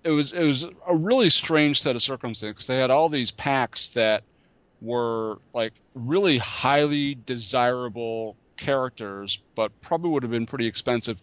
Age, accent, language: 40-59, American, English